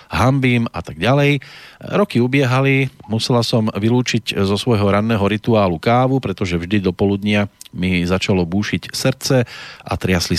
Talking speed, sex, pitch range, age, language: 140 wpm, male, 100-125 Hz, 40-59, Slovak